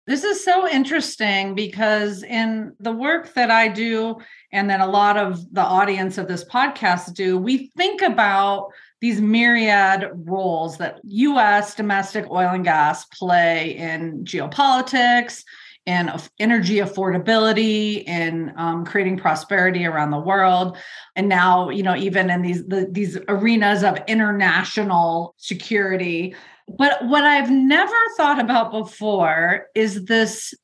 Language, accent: English, American